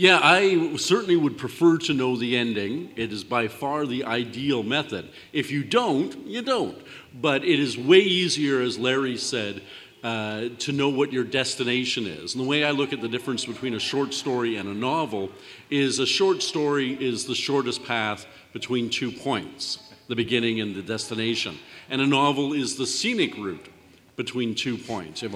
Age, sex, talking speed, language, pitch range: 50-69, male, 185 wpm, English, 115-140 Hz